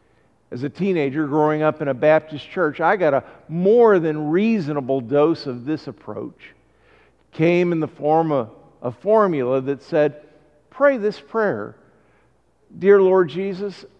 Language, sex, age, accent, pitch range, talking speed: English, male, 50-69, American, 150-205 Hz, 150 wpm